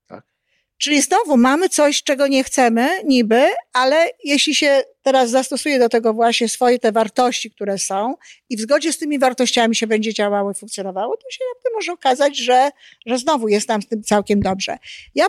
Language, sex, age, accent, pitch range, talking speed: Polish, female, 50-69, native, 220-285 Hz, 180 wpm